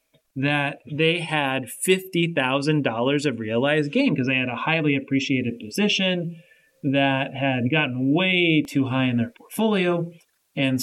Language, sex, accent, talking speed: English, male, American, 135 wpm